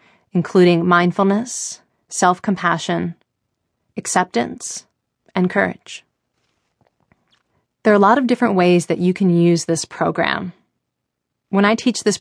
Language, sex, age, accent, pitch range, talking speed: English, female, 30-49, American, 175-225 Hz, 115 wpm